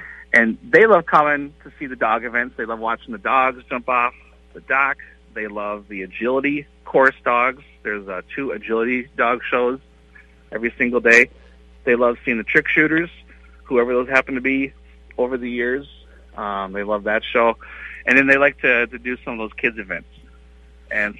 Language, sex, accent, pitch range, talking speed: English, male, American, 95-130 Hz, 185 wpm